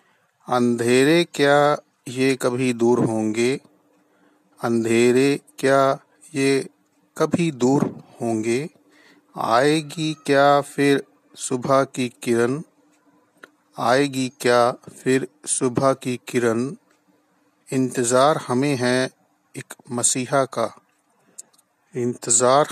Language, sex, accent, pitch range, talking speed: Hindi, male, native, 120-135 Hz, 80 wpm